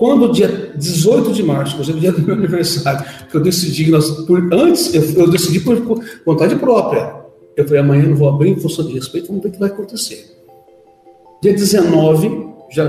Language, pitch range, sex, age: English, 145-200 Hz, male, 60-79